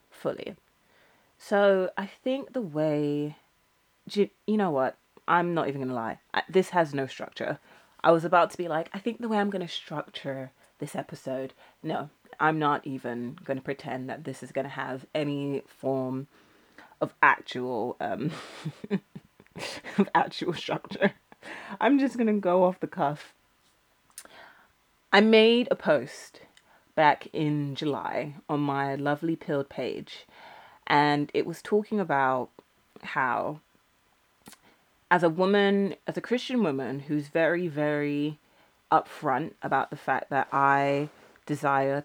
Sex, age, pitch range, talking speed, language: female, 30-49, 140-190 Hz, 135 wpm, English